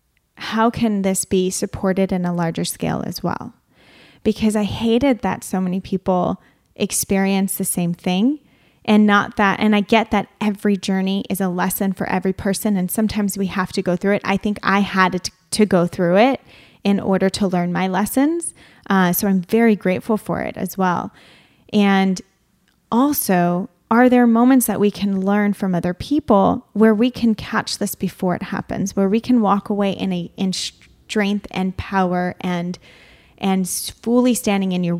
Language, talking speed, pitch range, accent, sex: English, 180 wpm, 185-215 Hz, American, female